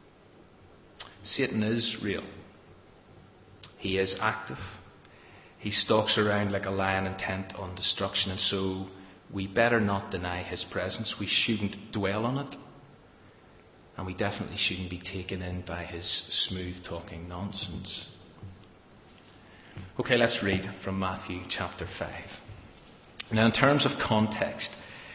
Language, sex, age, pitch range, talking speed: English, male, 30-49, 95-115 Hz, 125 wpm